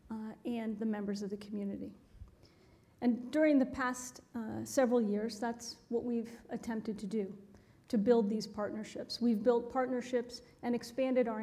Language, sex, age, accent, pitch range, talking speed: English, female, 40-59, American, 225-260 Hz, 155 wpm